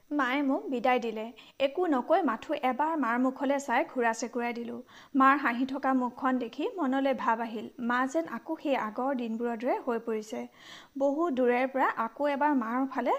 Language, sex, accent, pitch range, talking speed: Hindi, female, native, 240-285 Hz, 130 wpm